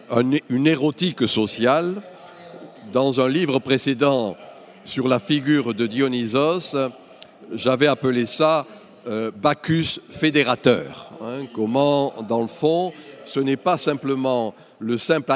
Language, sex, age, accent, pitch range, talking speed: Italian, male, 60-79, French, 120-150 Hz, 105 wpm